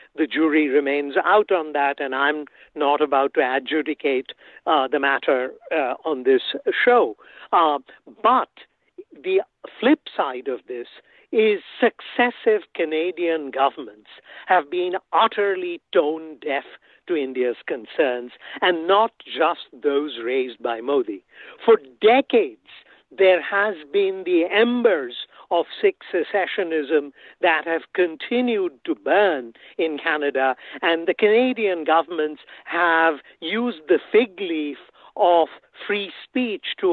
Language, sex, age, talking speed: English, male, 60-79, 120 wpm